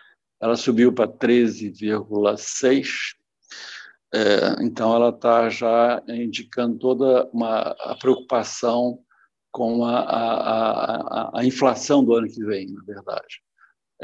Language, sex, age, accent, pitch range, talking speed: Portuguese, male, 60-79, Brazilian, 105-125 Hz, 105 wpm